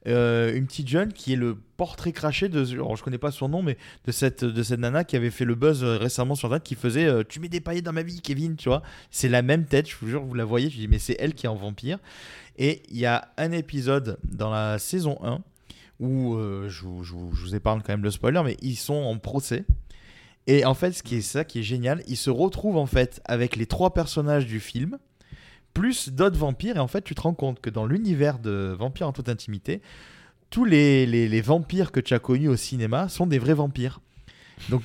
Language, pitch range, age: French, 120-155 Hz, 20-39